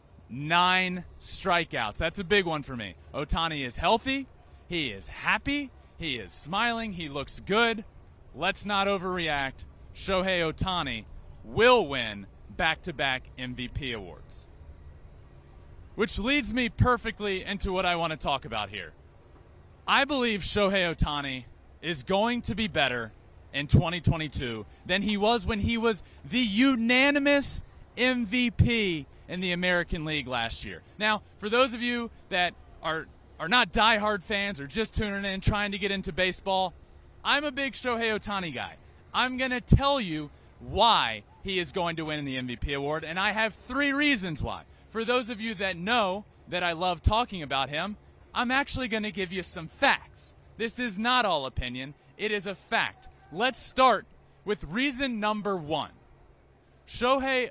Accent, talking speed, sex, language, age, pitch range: American, 160 wpm, male, English, 30-49, 140-230 Hz